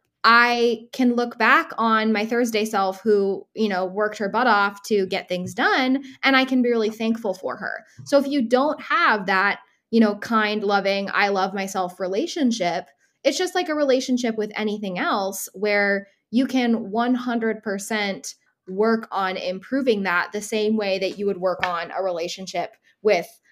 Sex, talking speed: female, 175 wpm